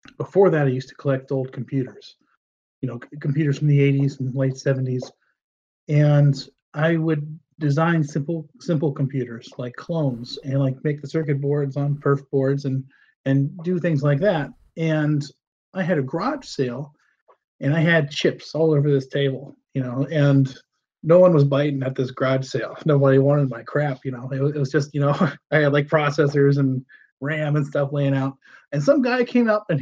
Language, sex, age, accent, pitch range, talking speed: English, male, 40-59, American, 140-180 Hz, 190 wpm